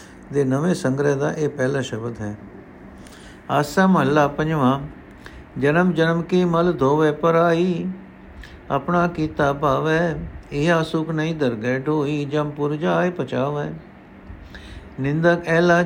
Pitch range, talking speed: 130-165 Hz, 125 wpm